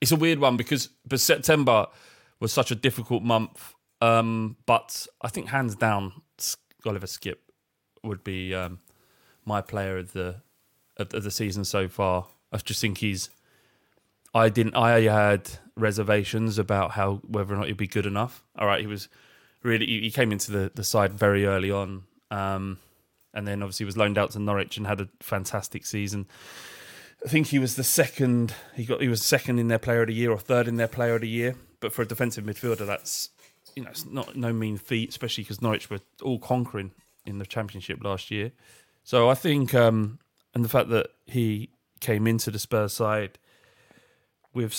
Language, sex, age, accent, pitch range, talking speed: English, male, 20-39, British, 100-125 Hz, 190 wpm